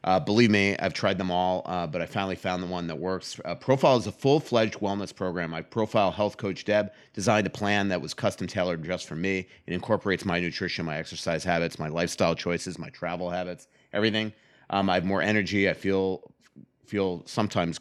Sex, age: male, 30-49